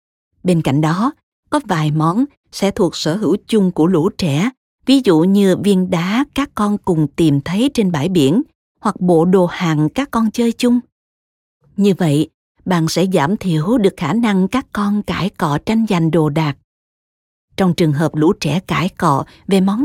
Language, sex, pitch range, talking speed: Vietnamese, female, 155-215 Hz, 185 wpm